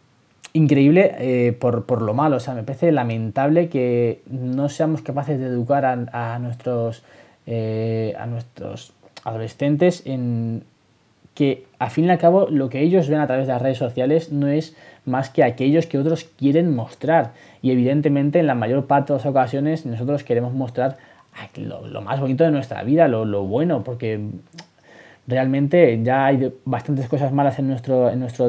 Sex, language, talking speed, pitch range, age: male, Spanish, 175 wpm, 120-150 Hz, 20-39